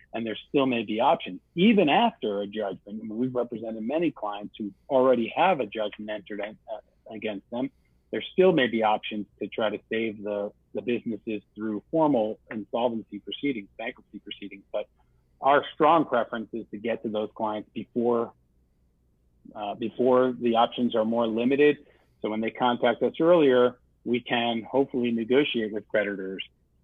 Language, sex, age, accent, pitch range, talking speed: English, male, 40-59, American, 105-120 Hz, 160 wpm